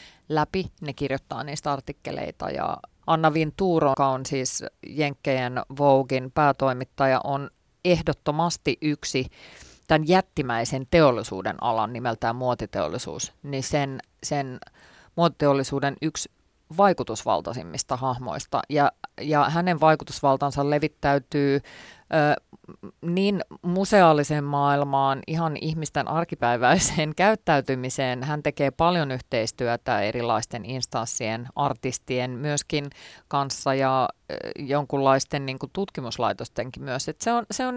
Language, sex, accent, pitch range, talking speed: Finnish, female, native, 130-160 Hz, 90 wpm